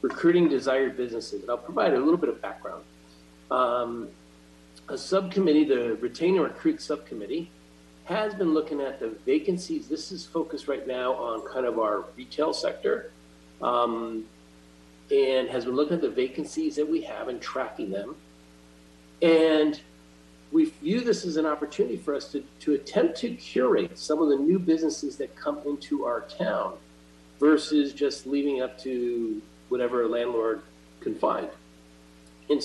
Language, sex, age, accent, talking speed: English, male, 50-69, American, 155 wpm